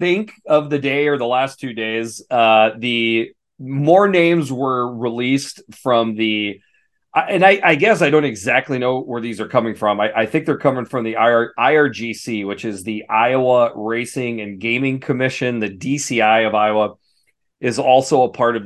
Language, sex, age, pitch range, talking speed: English, male, 30-49, 110-135 Hz, 180 wpm